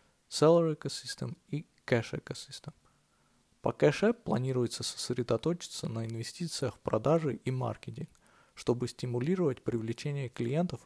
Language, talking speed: Russian, 110 wpm